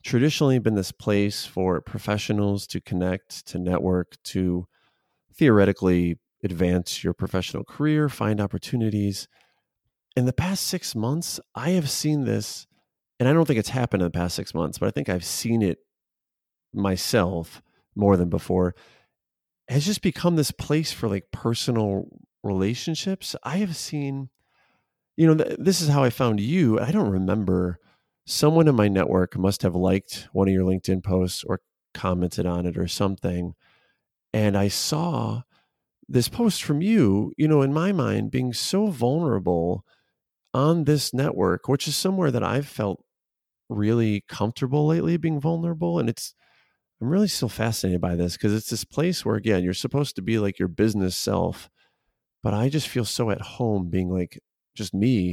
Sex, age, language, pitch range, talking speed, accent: male, 30-49, English, 95-140 Hz, 165 wpm, American